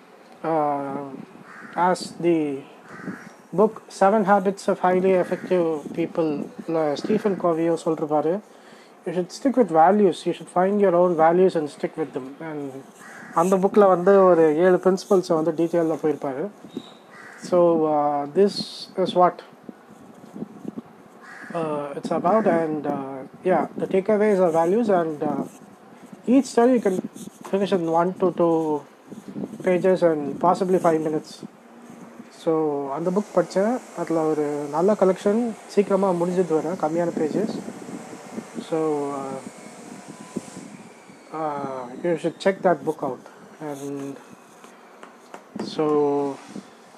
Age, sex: 20-39, male